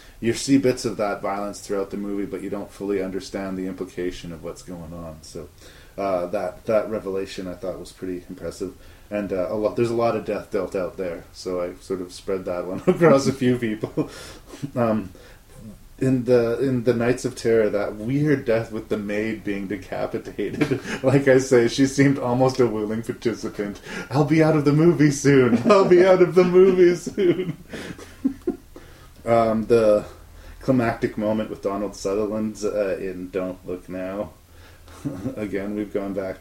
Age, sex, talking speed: 30-49, male, 180 wpm